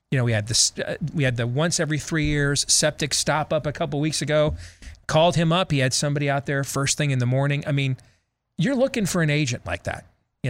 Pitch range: 120-160 Hz